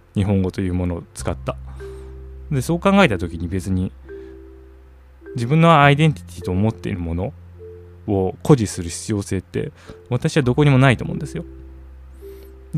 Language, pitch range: Japanese, 85-135 Hz